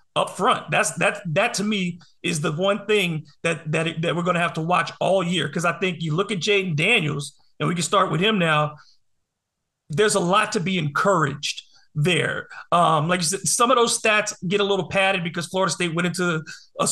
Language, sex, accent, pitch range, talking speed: English, male, American, 170-210 Hz, 225 wpm